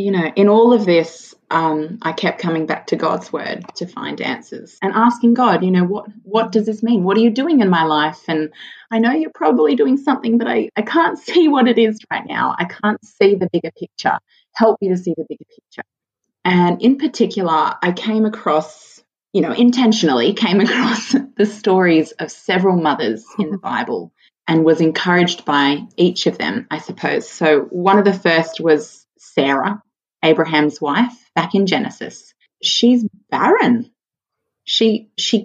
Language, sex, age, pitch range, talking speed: English, female, 20-39, 165-225 Hz, 185 wpm